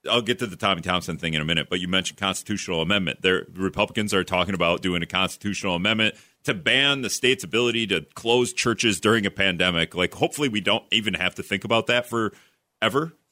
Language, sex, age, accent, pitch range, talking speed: English, male, 40-59, American, 95-125 Hz, 210 wpm